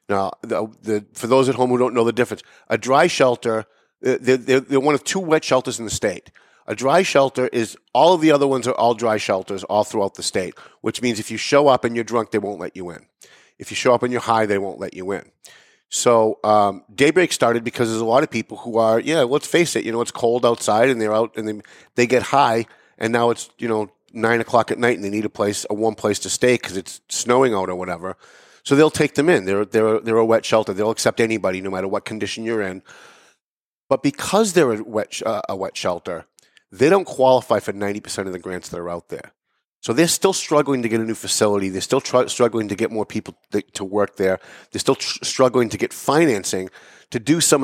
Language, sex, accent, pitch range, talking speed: English, male, American, 105-130 Hz, 235 wpm